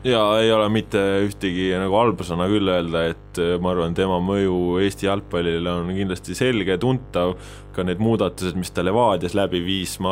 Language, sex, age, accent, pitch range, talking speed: English, male, 20-39, Finnish, 90-105 Hz, 170 wpm